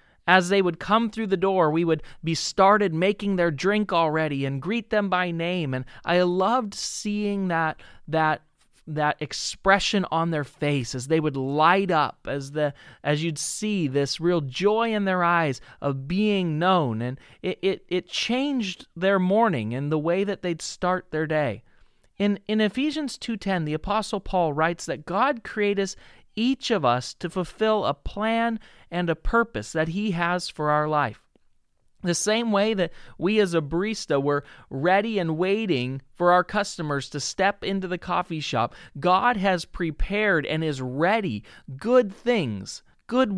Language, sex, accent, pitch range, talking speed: English, male, American, 150-205 Hz, 170 wpm